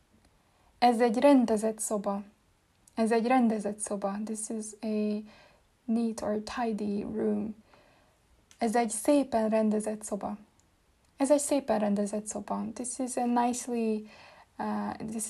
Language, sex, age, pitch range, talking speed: Hungarian, female, 20-39, 210-240 Hz, 120 wpm